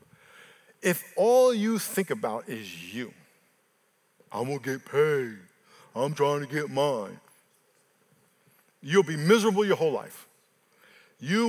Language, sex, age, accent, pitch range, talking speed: English, male, 50-69, American, 145-205 Hz, 125 wpm